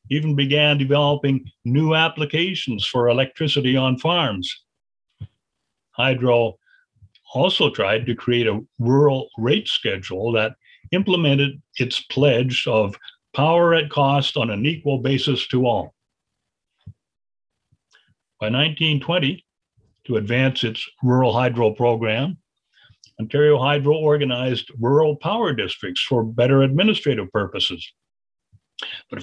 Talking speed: 105 wpm